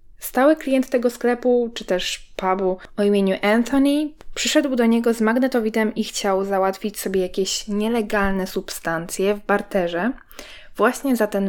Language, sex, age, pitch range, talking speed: Polish, female, 20-39, 190-235 Hz, 140 wpm